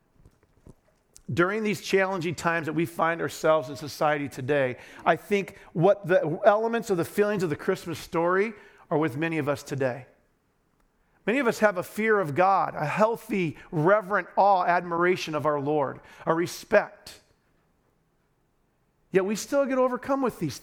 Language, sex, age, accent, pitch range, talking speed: English, male, 40-59, American, 165-240 Hz, 155 wpm